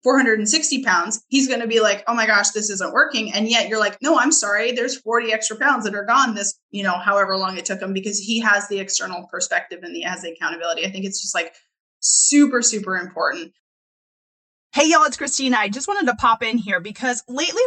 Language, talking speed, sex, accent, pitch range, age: English, 230 wpm, female, American, 200-275 Hz, 20-39